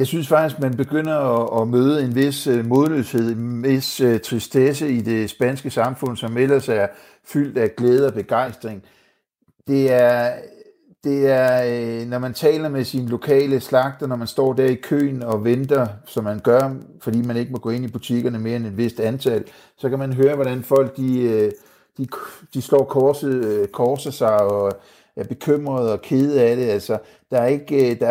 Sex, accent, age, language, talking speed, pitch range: male, native, 60-79, Danish, 185 wpm, 115-135 Hz